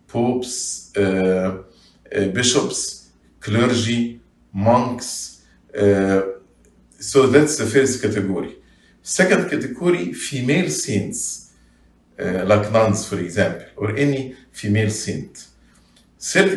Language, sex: English, male